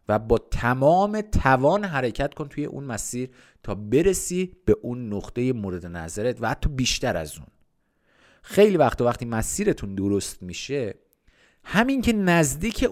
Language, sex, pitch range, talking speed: Persian, male, 115-155 Hz, 145 wpm